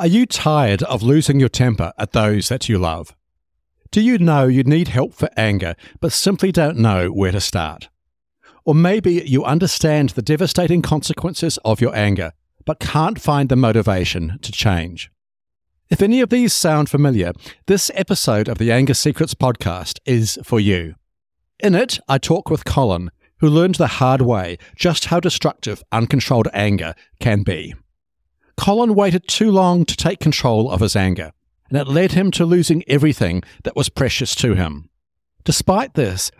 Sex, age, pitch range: male, 60-79, 100-165 Hz